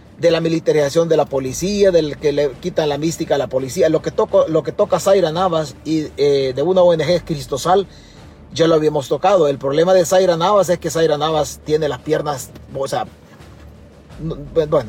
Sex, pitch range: male, 140-180 Hz